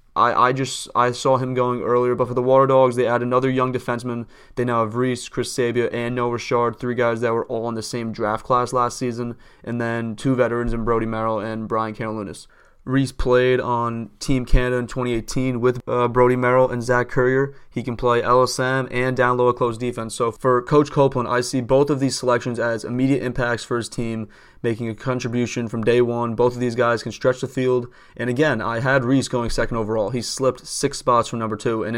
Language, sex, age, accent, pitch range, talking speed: English, male, 20-39, American, 115-130 Hz, 220 wpm